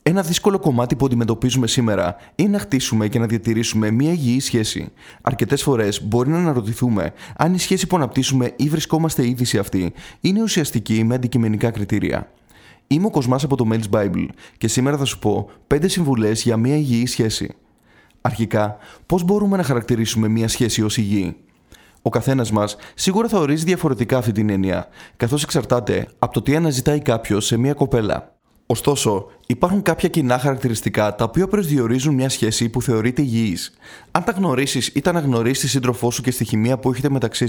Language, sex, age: Greek, male, 20-39